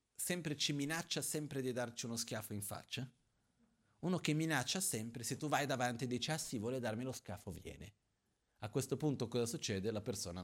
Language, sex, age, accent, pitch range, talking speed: Italian, male, 40-59, native, 110-175 Hz, 195 wpm